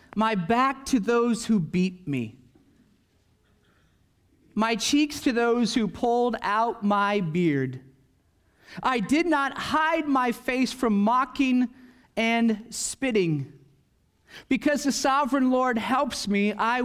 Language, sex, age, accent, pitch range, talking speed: English, male, 40-59, American, 165-250 Hz, 120 wpm